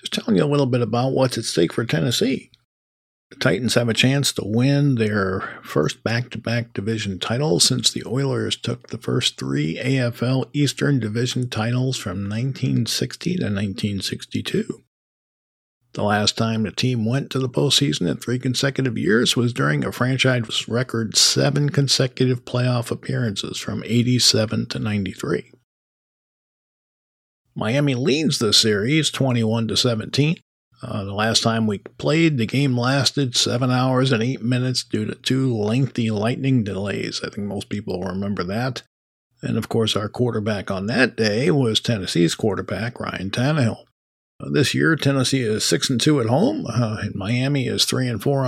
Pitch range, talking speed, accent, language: 105-130 Hz, 150 wpm, American, English